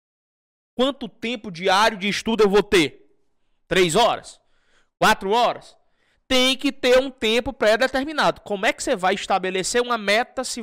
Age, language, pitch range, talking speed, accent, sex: 20-39, Portuguese, 150-250 Hz, 150 wpm, Brazilian, male